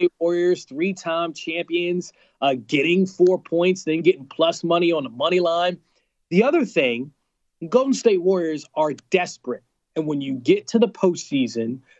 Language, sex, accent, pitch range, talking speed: English, male, American, 155-195 Hz, 150 wpm